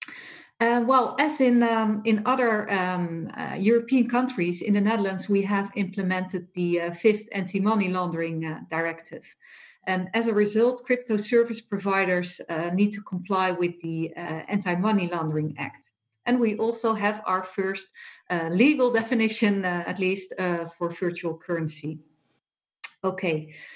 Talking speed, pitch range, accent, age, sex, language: 145 wpm, 175-225 Hz, Dutch, 40-59, female, English